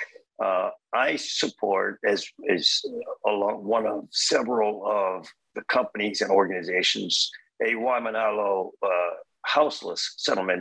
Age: 50-69